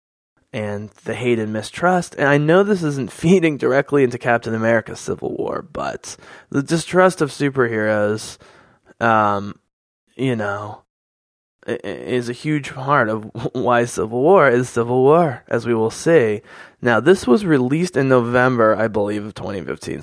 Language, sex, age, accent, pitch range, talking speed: English, male, 20-39, American, 110-145 Hz, 150 wpm